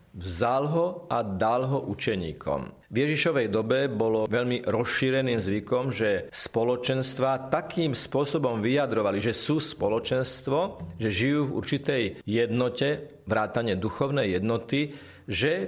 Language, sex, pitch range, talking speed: Slovak, male, 115-140 Hz, 115 wpm